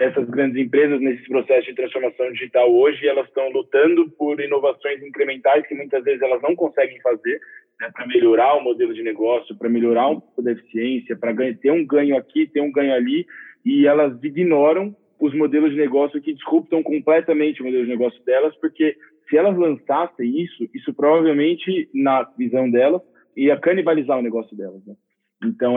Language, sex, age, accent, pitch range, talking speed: Portuguese, male, 20-39, Brazilian, 125-165 Hz, 170 wpm